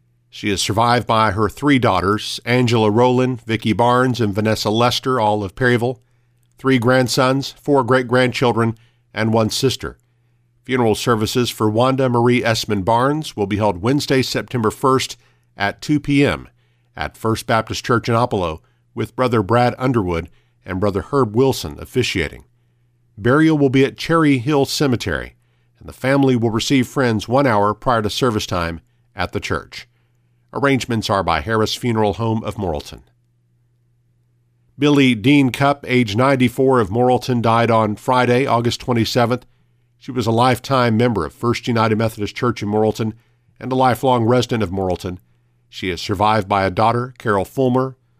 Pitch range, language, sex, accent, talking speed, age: 110-125 Hz, English, male, American, 155 wpm, 50-69